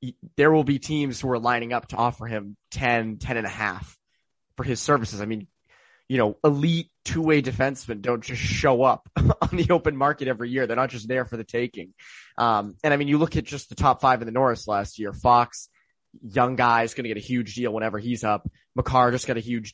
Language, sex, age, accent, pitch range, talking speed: English, male, 20-39, American, 115-135 Hz, 235 wpm